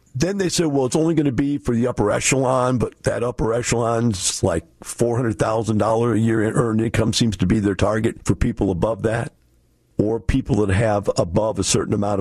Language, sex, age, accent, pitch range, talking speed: English, male, 50-69, American, 95-150 Hz, 200 wpm